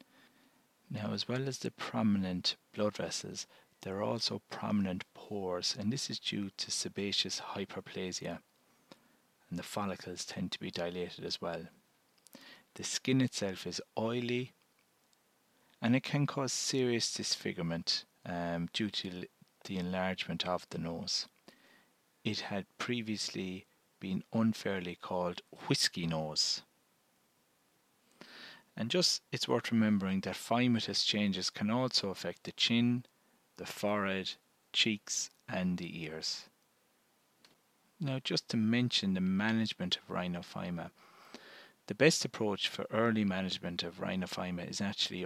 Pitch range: 90-115 Hz